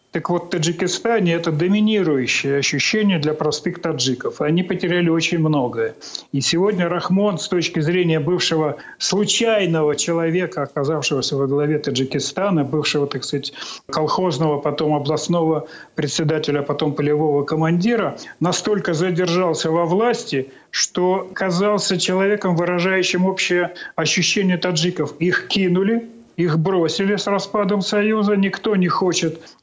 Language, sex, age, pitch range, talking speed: Russian, male, 40-59, 155-195 Hz, 115 wpm